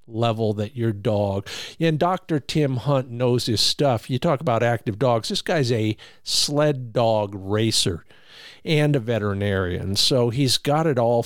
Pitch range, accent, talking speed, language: 110-145 Hz, American, 160 wpm, English